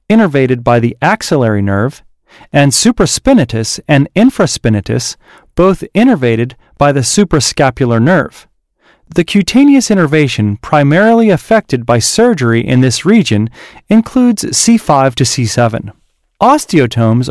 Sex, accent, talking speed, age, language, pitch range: male, American, 105 wpm, 30-49, English, 125-200 Hz